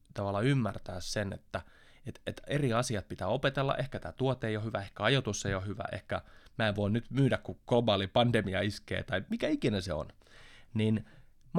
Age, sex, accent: 20-39, male, native